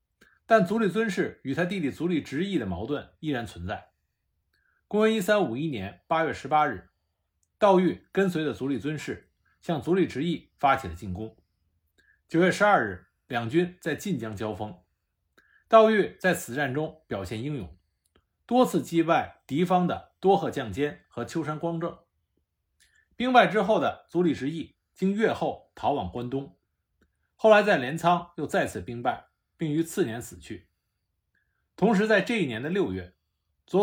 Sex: male